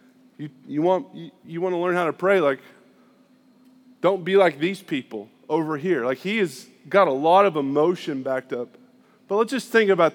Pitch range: 155-225 Hz